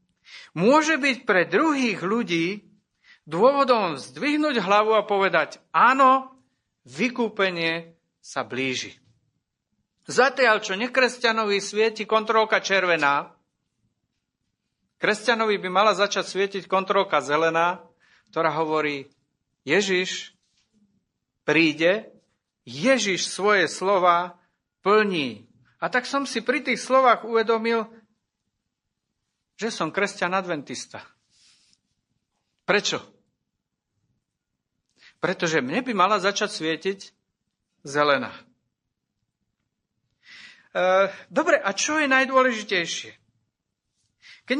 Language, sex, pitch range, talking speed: Slovak, male, 170-230 Hz, 85 wpm